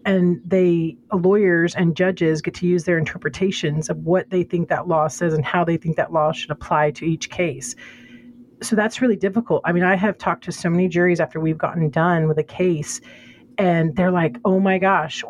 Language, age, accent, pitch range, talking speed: English, 40-59, American, 165-200 Hz, 210 wpm